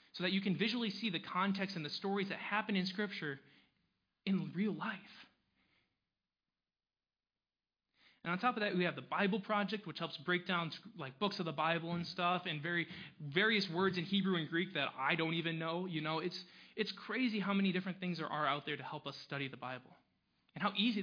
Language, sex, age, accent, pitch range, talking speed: English, male, 20-39, American, 155-195 Hz, 210 wpm